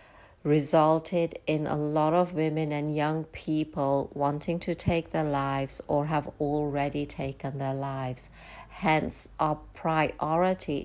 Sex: female